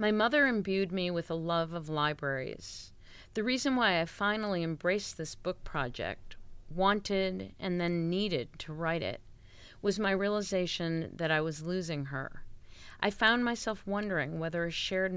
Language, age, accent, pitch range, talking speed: English, 40-59, American, 150-190 Hz, 160 wpm